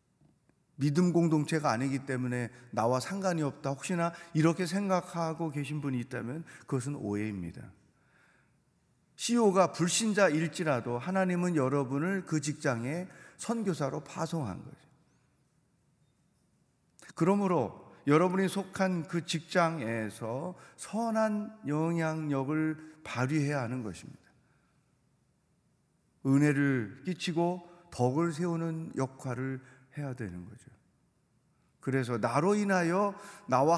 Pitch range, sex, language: 135-185 Hz, male, Korean